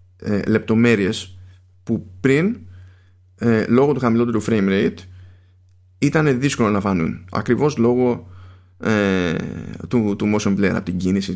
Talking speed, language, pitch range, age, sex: 110 wpm, Greek, 95-115 Hz, 20-39, male